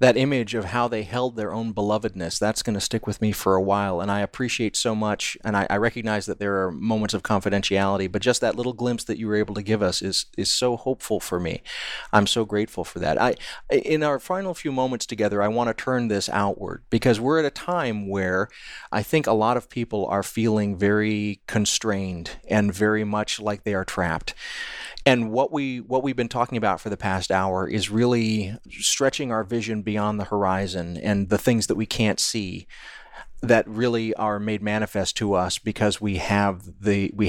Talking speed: 210 wpm